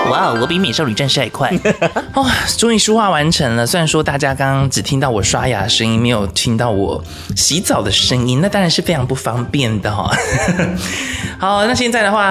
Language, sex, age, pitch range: Chinese, male, 20-39, 105-160 Hz